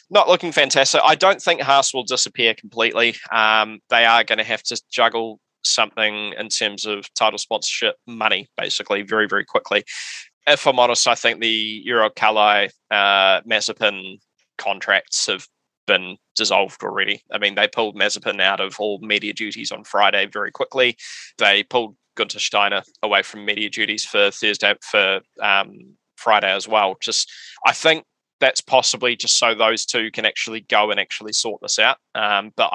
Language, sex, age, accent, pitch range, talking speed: English, male, 20-39, Australian, 100-115 Hz, 170 wpm